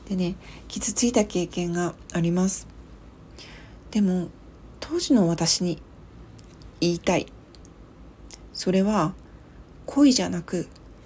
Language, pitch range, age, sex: Japanese, 175-240 Hz, 40-59, female